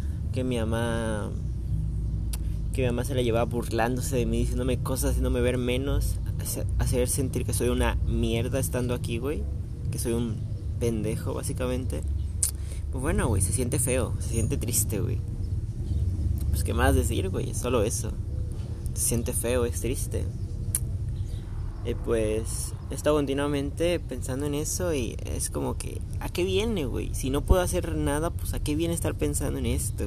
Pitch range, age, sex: 90-125 Hz, 20-39, male